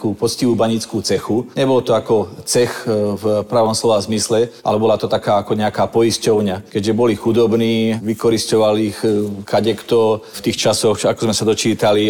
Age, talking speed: 40-59, 155 wpm